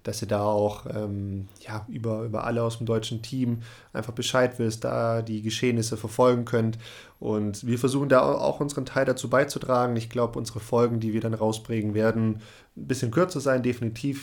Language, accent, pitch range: German, German, 110-125 Hz